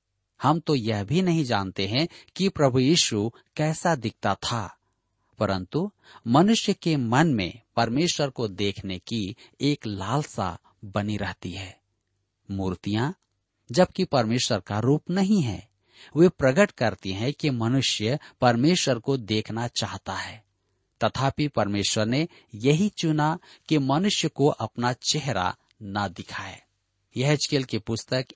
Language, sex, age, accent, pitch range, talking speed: Hindi, male, 50-69, native, 105-155 Hz, 125 wpm